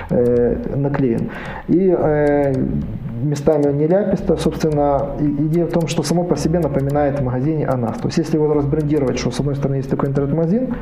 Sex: male